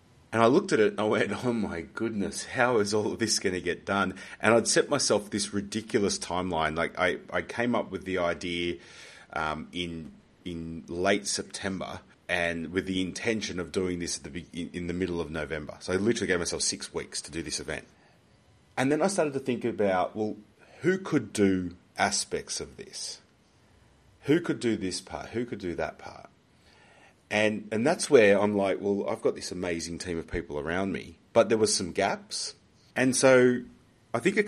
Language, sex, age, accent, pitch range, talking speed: English, male, 30-49, Australian, 85-110 Hz, 195 wpm